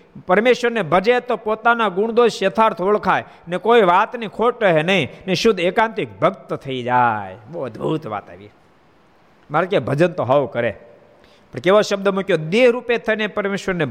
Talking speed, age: 110 wpm, 50-69